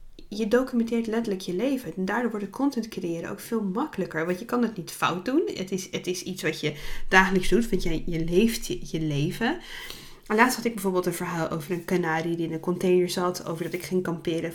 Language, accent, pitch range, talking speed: Dutch, Dutch, 180-245 Hz, 235 wpm